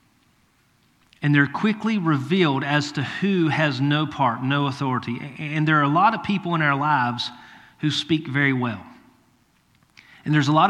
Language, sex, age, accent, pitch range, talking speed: English, male, 40-59, American, 125-150 Hz, 170 wpm